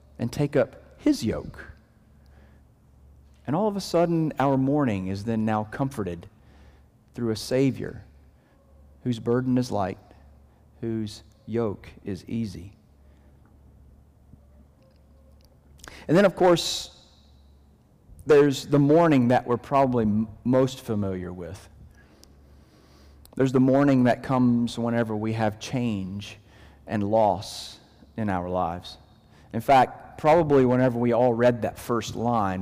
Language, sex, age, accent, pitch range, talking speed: English, male, 40-59, American, 90-130 Hz, 120 wpm